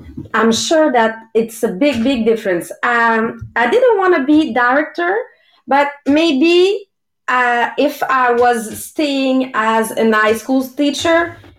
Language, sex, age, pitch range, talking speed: English, female, 30-49, 210-265 Hz, 140 wpm